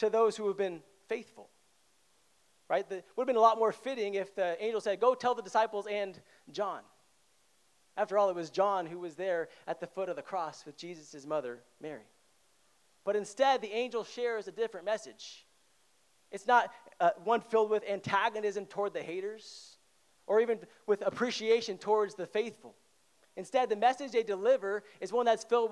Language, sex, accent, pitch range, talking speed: English, male, American, 160-220 Hz, 180 wpm